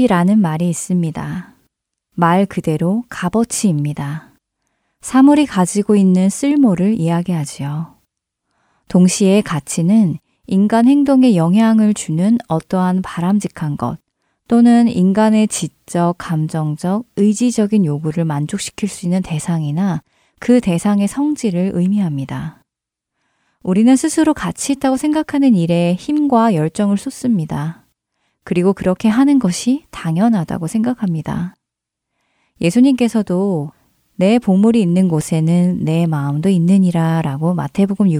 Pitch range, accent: 170-225 Hz, native